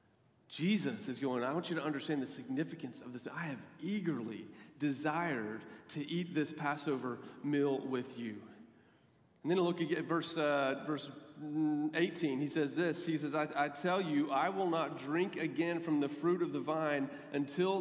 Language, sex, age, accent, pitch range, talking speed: English, male, 40-59, American, 150-190 Hz, 175 wpm